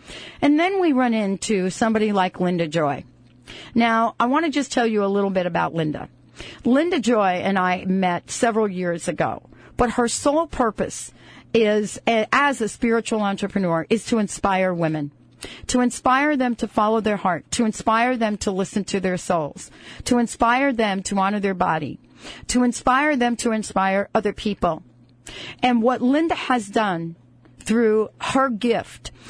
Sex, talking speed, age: female, 160 wpm, 40-59